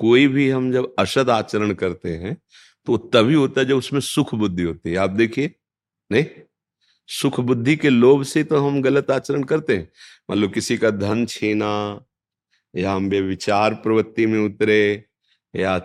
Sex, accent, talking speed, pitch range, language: male, native, 170 wpm, 105-145 Hz, Hindi